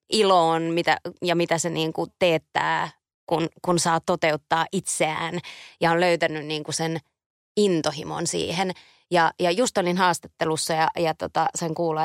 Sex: female